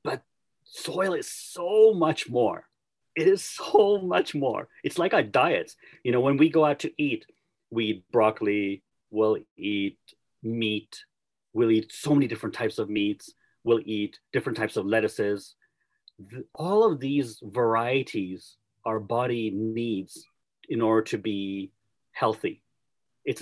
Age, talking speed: 40-59, 145 wpm